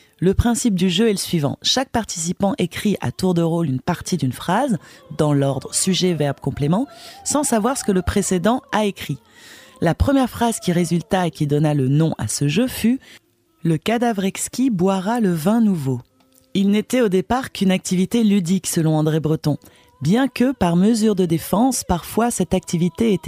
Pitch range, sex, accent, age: 160-235 Hz, female, French, 30-49